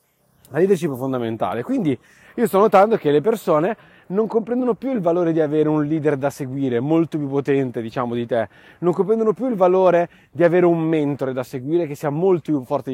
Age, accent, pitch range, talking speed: 30-49, native, 140-190 Hz, 205 wpm